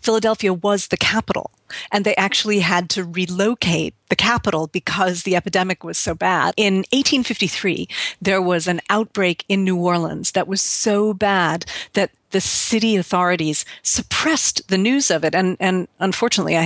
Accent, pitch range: American, 175-210 Hz